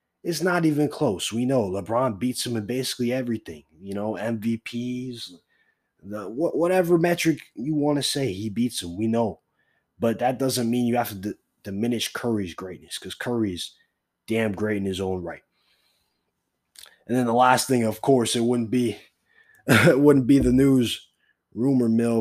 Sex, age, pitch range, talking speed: male, 20-39, 105-125 Hz, 175 wpm